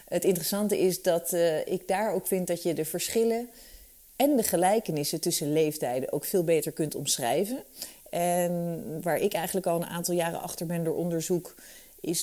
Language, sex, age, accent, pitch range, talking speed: Dutch, female, 30-49, Dutch, 155-195 Hz, 175 wpm